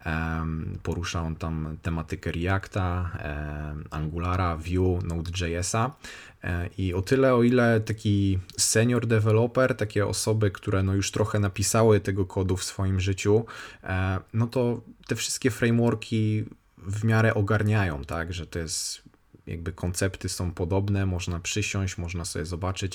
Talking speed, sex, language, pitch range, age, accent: 130 wpm, male, Polish, 85-105 Hz, 20-39, native